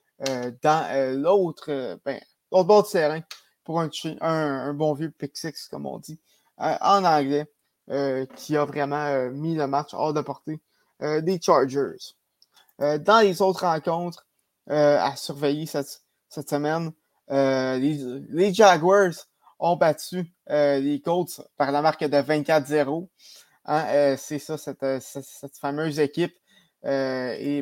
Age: 20-39